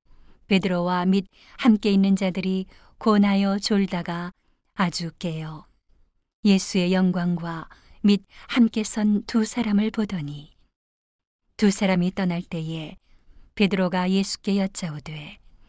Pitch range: 175-205 Hz